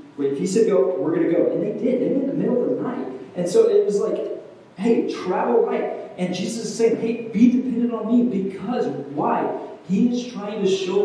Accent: American